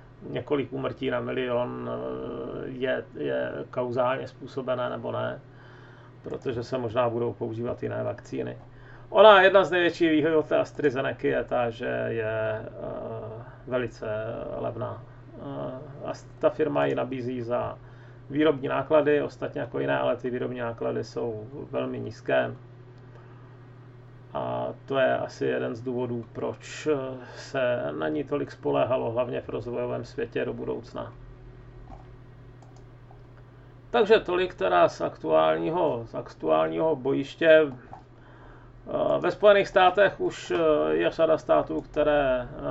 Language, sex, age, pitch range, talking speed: Czech, male, 30-49, 120-145 Hz, 110 wpm